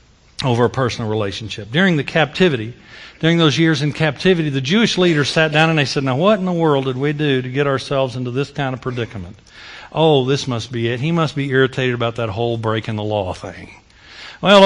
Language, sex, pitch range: English, male, 155-235 Hz